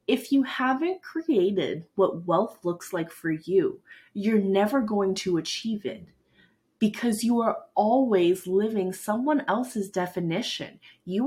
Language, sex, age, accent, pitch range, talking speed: English, female, 20-39, American, 180-245 Hz, 135 wpm